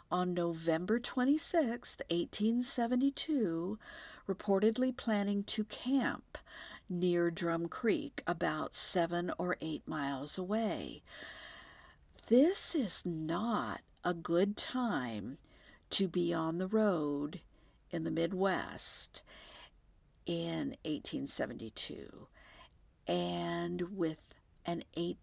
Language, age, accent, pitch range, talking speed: English, 50-69, American, 175-245 Hz, 80 wpm